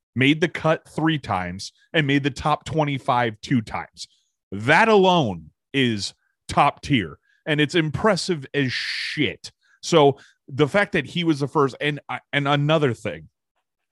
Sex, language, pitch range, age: male, English, 105-150 Hz, 30-49